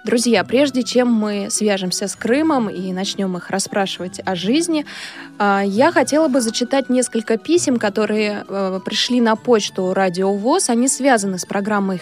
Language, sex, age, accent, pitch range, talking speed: Russian, female, 20-39, native, 200-260 Hz, 145 wpm